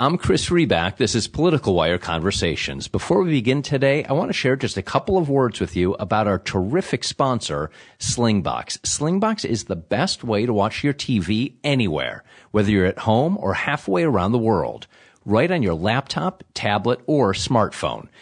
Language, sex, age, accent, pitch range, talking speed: English, male, 40-59, American, 105-155 Hz, 180 wpm